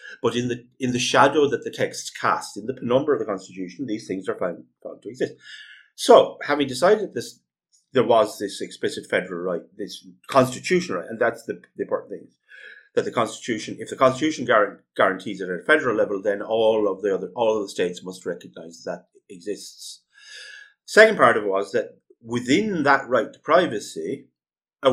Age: 30-49